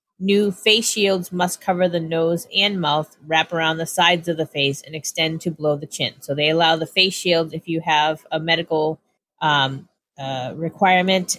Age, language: 30-49, English